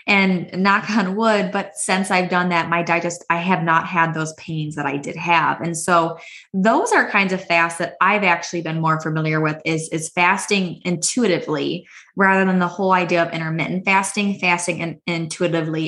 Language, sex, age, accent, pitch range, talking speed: English, female, 20-39, American, 165-195 Hz, 185 wpm